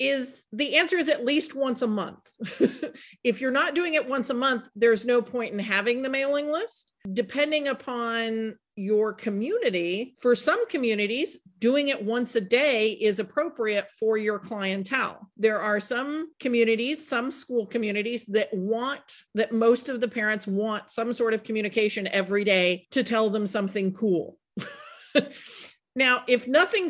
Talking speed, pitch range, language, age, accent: 160 wpm, 215-265 Hz, English, 40-59, American